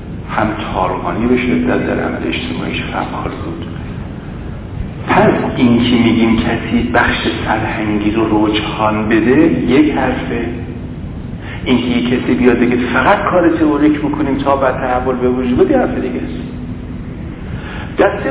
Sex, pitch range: male, 110-145 Hz